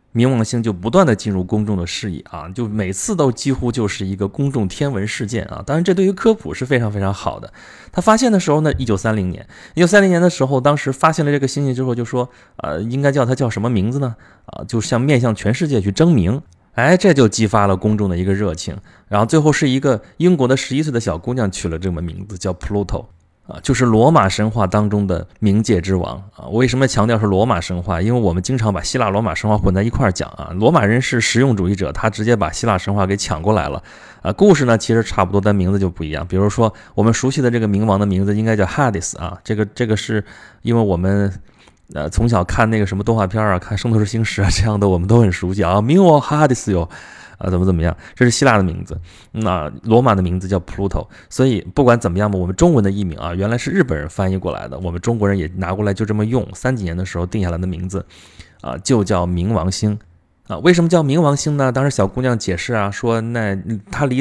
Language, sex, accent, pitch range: Chinese, male, native, 95-125 Hz